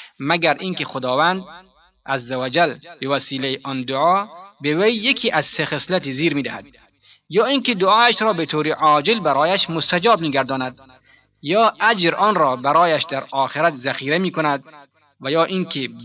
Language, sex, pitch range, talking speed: Persian, male, 135-190 Hz, 150 wpm